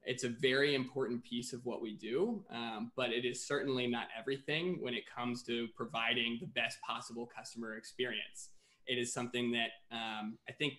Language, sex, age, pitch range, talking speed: English, male, 20-39, 115-130 Hz, 185 wpm